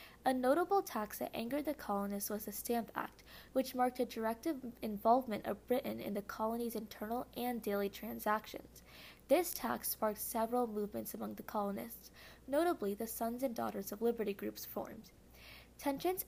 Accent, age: American, 10-29